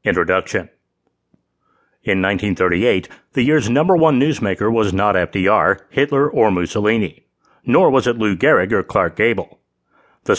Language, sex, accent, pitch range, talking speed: English, male, American, 90-135 Hz, 135 wpm